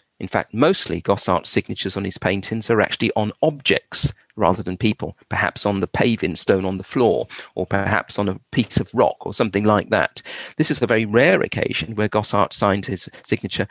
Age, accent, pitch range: 40-59, British, 100-130 Hz